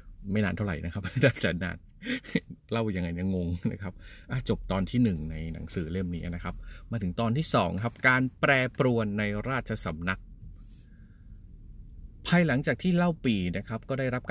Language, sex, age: Thai, male, 30-49